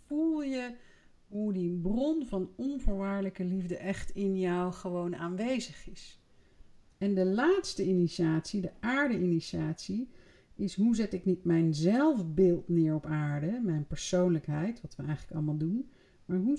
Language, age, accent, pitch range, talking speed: Dutch, 50-69, Dutch, 175-240 Hz, 140 wpm